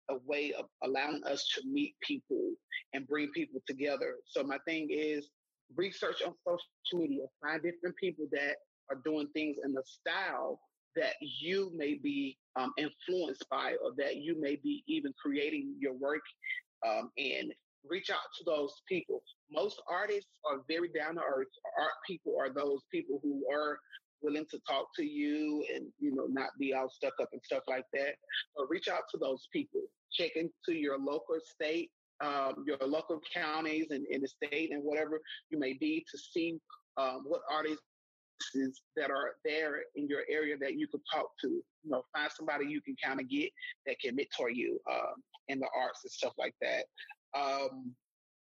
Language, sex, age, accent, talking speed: English, male, 30-49, American, 180 wpm